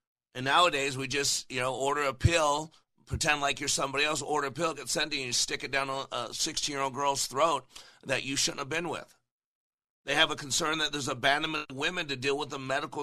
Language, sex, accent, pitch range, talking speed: English, male, American, 135-160 Hz, 220 wpm